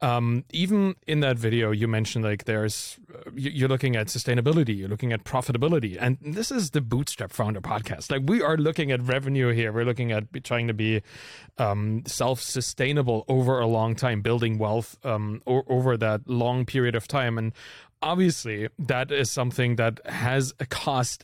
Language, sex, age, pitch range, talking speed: English, male, 30-49, 115-145 Hz, 180 wpm